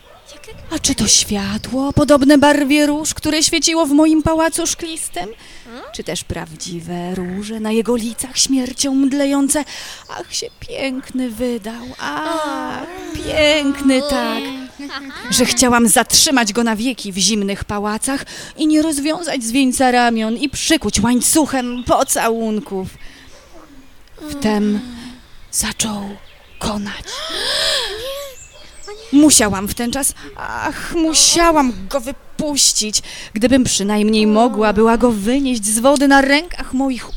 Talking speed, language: 110 wpm, Polish